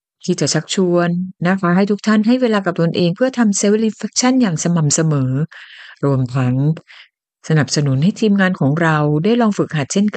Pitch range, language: 155-215 Hz, Thai